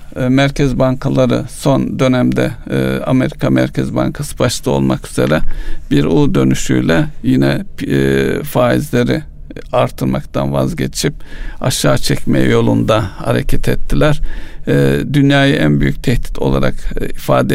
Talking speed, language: 95 wpm, Turkish